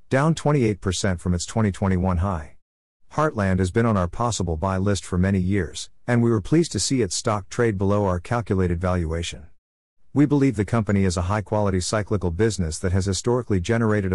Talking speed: 180 wpm